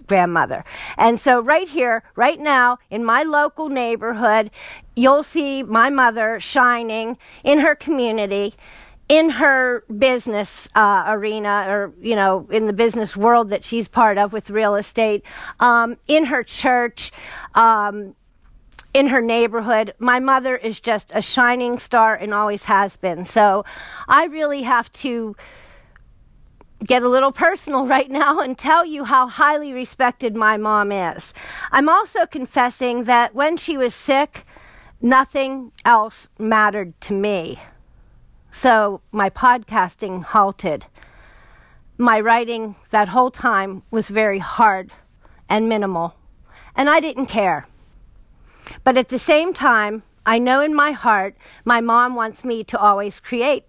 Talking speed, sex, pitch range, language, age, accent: 140 wpm, female, 215-265 Hz, English, 40-59, American